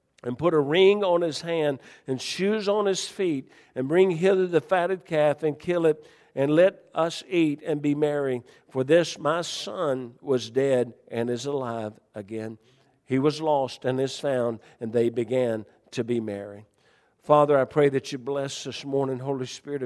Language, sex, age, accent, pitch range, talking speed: English, male, 50-69, American, 115-140 Hz, 180 wpm